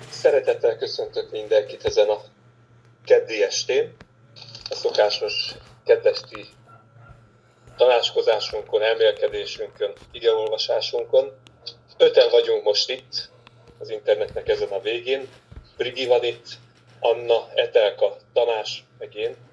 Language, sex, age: Hungarian, male, 30-49